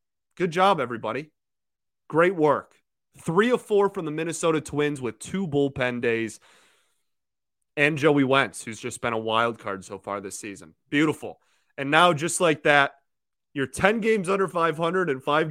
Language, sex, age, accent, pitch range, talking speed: English, male, 30-49, American, 115-150 Hz, 165 wpm